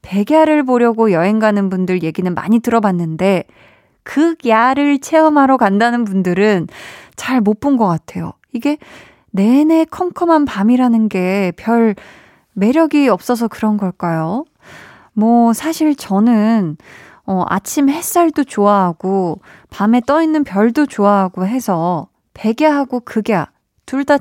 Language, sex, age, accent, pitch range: Korean, female, 20-39, native, 195-265 Hz